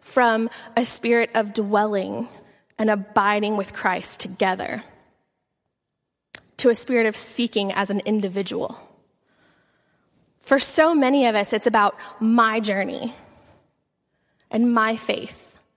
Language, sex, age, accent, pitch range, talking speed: English, female, 20-39, American, 210-250 Hz, 115 wpm